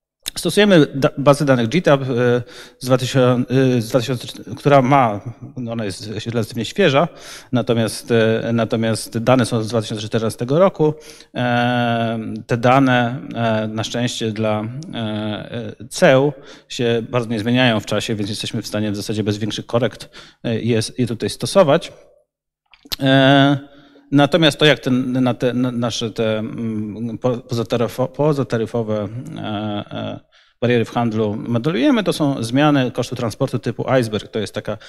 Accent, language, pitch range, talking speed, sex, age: native, Polish, 110-130 Hz, 115 wpm, male, 30-49